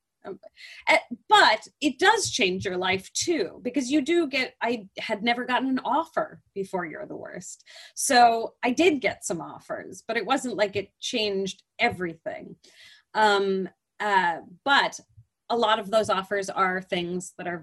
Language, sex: English, female